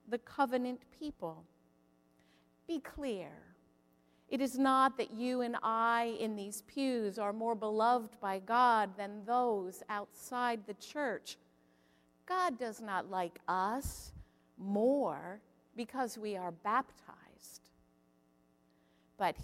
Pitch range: 185-270 Hz